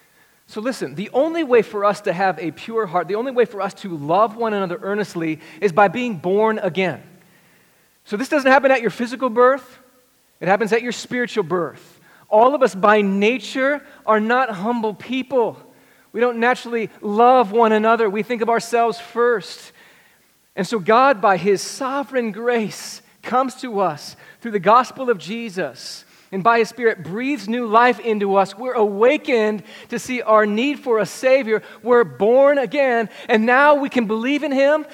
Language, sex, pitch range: English, male, 185-240 Hz